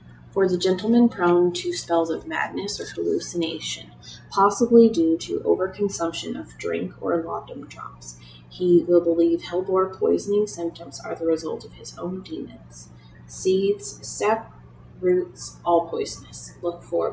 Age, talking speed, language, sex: 30-49, 135 wpm, English, female